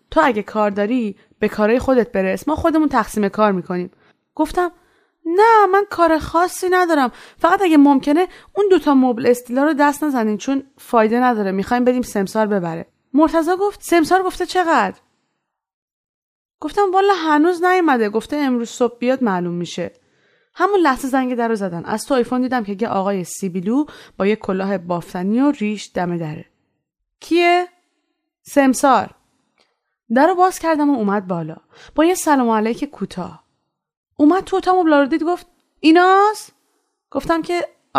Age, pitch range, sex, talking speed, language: 20-39, 230-345 Hz, female, 155 wpm, Persian